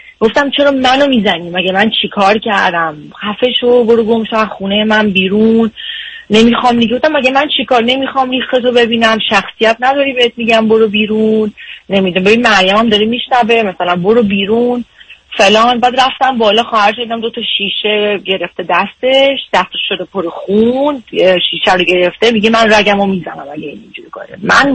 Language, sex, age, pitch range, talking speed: Persian, female, 30-49, 200-235 Hz, 155 wpm